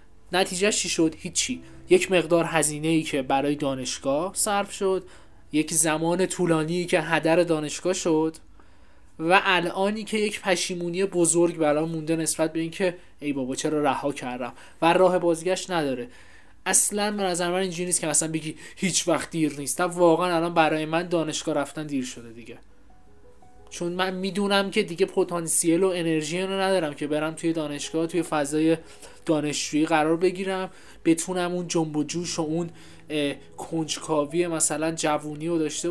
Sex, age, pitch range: male, 20-39, 155-185 Hz